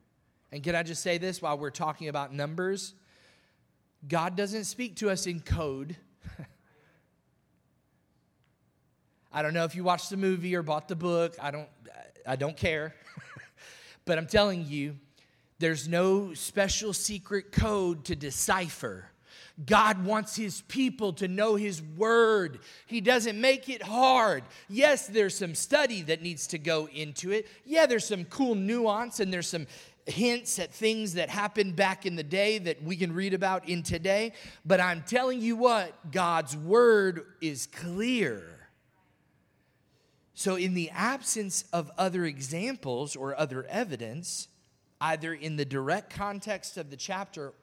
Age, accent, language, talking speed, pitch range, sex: 30-49, American, English, 150 wpm, 160-210 Hz, male